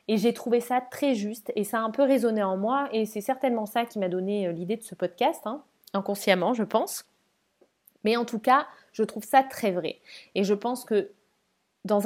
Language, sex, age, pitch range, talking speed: English, female, 20-39, 200-245 Hz, 215 wpm